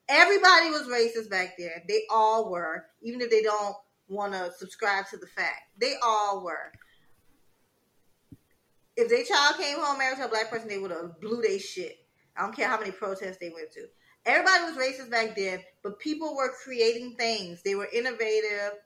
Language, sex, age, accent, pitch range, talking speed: English, female, 20-39, American, 190-265 Hz, 190 wpm